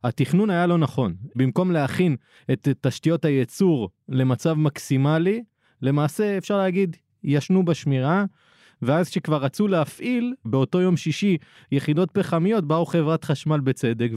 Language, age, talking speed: Hebrew, 20-39, 125 wpm